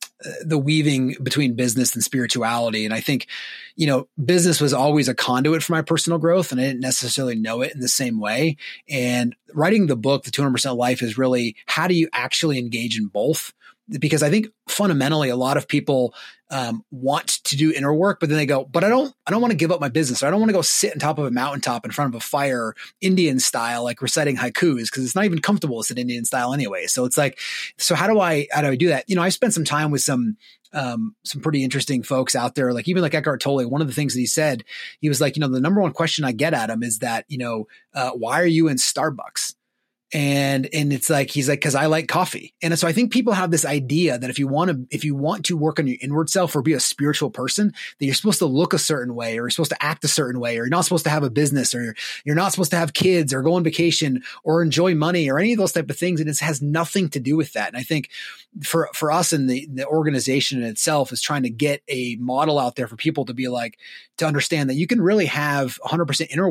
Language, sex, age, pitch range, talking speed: English, male, 30-49, 130-165 Hz, 265 wpm